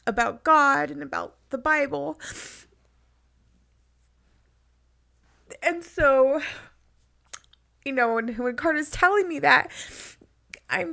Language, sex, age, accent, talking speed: English, female, 30-49, American, 95 wpm